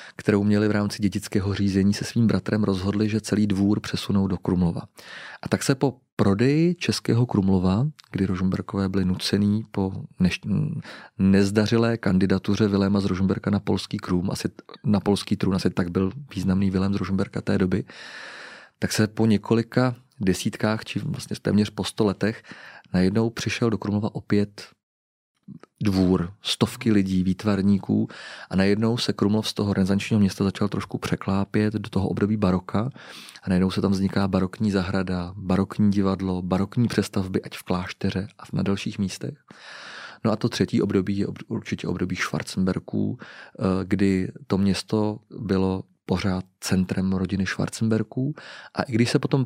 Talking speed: 150 wpm